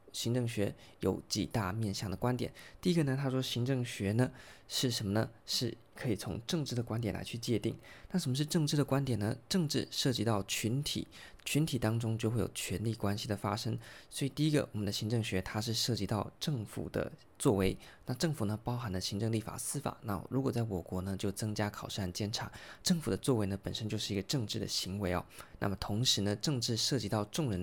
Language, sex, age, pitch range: Chinese, male, 20-39, 105-125 Hz